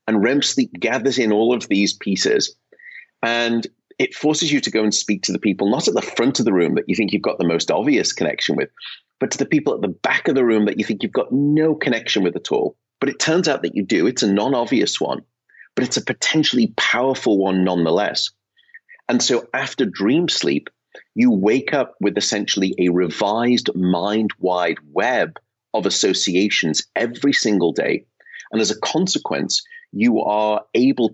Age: 30-49